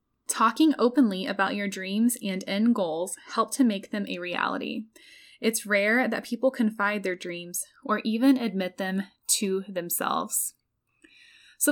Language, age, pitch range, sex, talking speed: English, 10-29, 200-260 Hz, female, 145 wpm